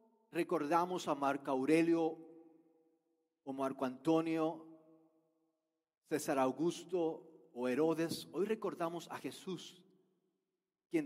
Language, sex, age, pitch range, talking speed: Spanish, male, 40-59, 150-195 Hz, 85 wpm